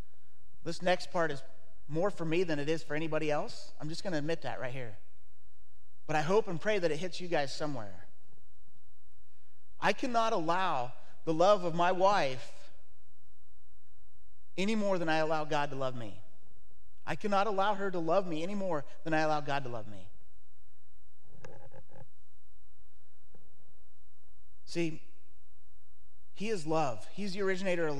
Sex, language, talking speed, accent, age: male, English, 155 wpm, American, 30-49